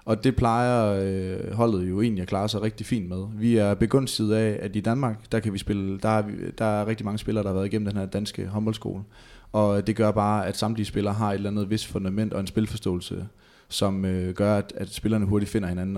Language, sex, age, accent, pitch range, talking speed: Danish, male, 20-39, native, 95-110 Hz, 240 wpm